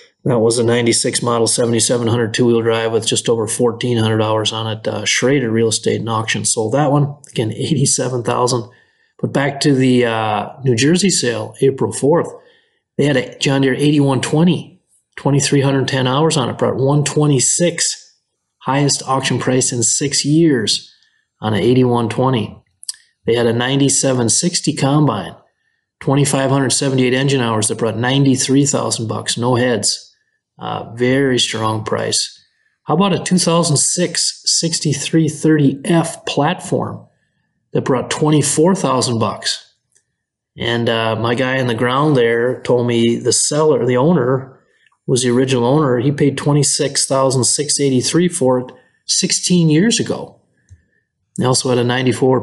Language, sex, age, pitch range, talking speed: English, male, 30-49, 120-145 Hz, 130 wpm